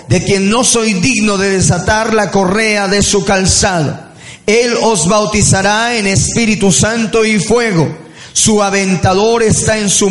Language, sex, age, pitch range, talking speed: Spanish, male, 40-59, 170-220 Hz, 150 wpm